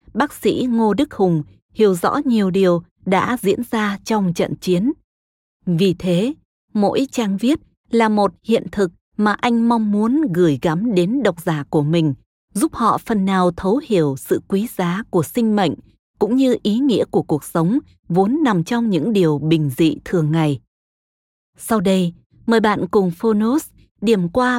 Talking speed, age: 175 wpm, 20-39